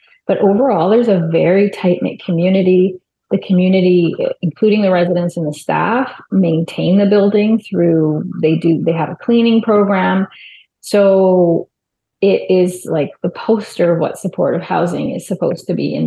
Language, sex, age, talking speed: English, female, 30-49, 155 wpm